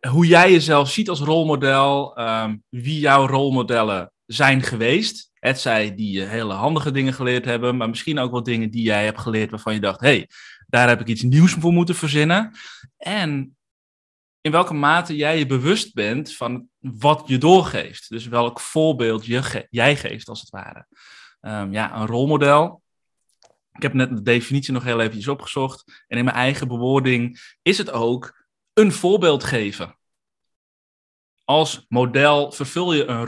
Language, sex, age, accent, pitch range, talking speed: Dutch, male, 20-39, Dutch, 115-155 Hz, 170 wpm